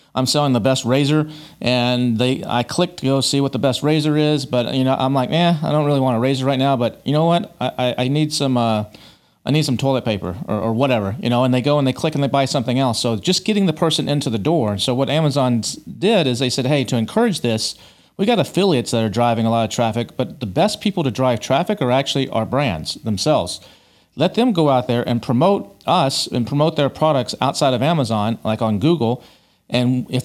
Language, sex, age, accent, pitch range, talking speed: English, male, 40-59, American, 120-155 Hz, 245 wpm